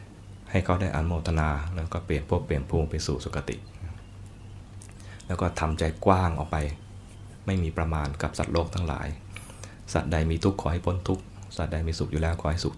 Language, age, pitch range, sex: Thai, 20-39, 80-100 Hz, male